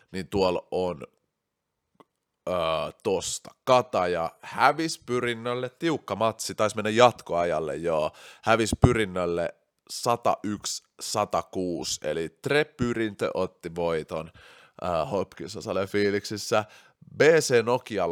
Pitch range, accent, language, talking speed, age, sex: 90-125 Hz, native, Finnish, 90 wpm, 30-49, male